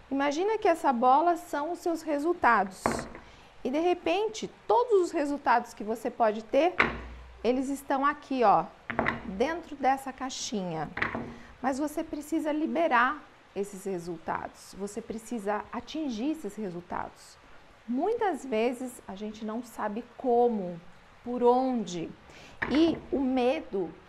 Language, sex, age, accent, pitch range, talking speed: Portuguese, female, 40-59, Brazilian, 215-295 Hz, 120 wpm